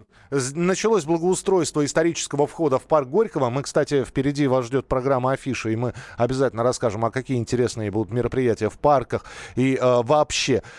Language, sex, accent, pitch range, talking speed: Russian, male, native, 125-160 Hz, 155 wpm